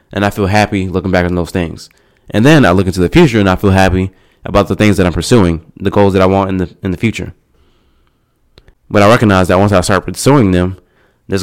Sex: male